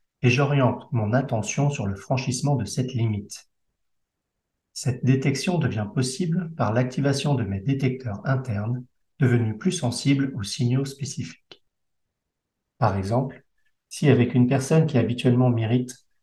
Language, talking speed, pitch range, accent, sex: French, 130 wpm, 115-140 Hz, French, male